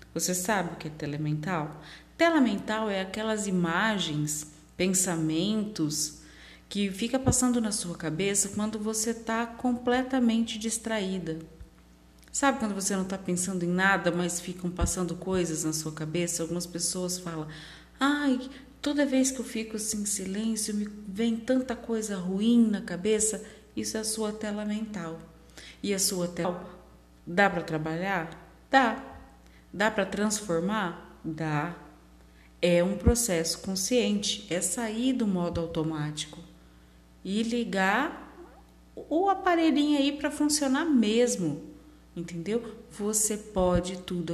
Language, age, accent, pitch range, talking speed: Portuguese, 40-59, Brazilian, 160-220 Hz, 130 wpm